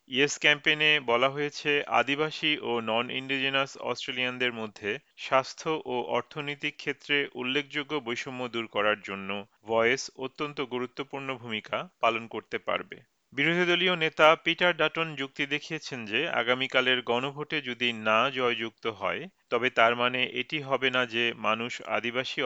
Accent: native